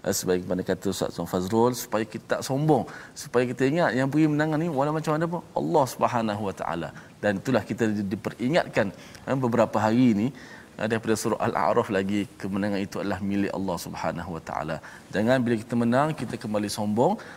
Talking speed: 185 wpm